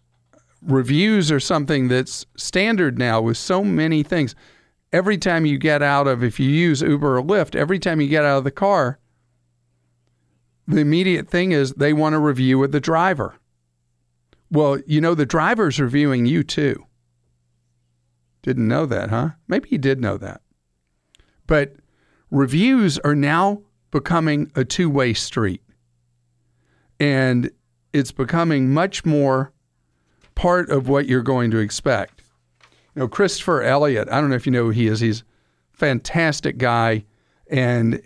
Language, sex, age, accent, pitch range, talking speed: English, male, 50-69, American, 110-150 Hz, 150 wpm